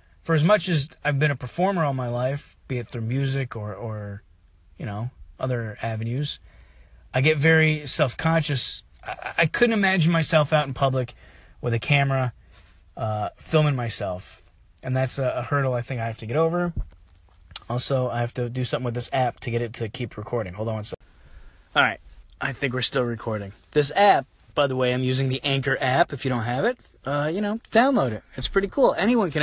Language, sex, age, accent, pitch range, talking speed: English, male, 30-49, American, 110-145 Hz, 205 wpm